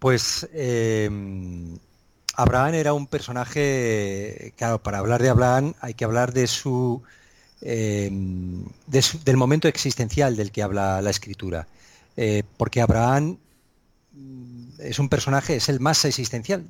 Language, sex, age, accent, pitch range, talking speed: Spanish, male, 40-59, Spanish, 110-135 Hz, 135 wpm